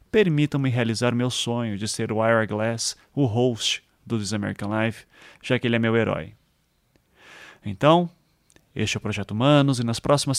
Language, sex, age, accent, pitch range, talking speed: Portuguese, male, 30-49, Brazilian, 115-150 Hz, 175 wpm